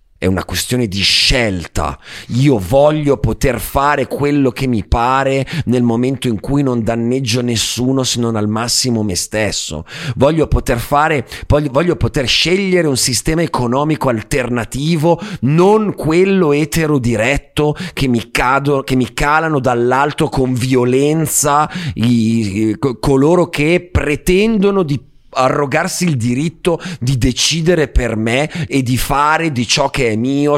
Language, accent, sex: Italian, native, male